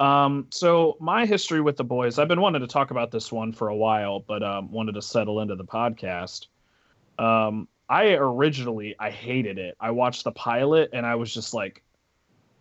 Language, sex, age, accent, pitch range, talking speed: English, male, 30-49, American, 105-125 Hz, 195 wpm